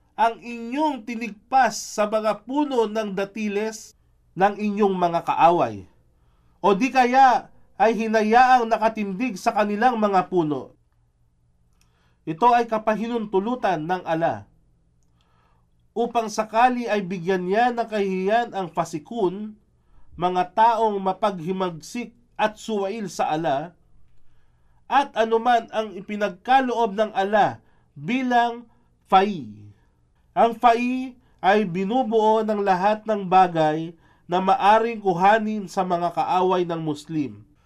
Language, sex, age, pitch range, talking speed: Filipino, male, 40-59, 160-220 Hz, 105 wpm